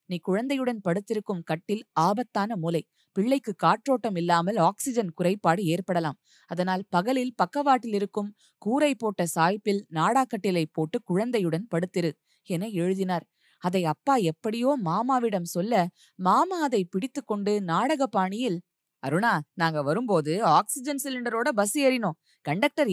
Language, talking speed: Tamil, 115 wpm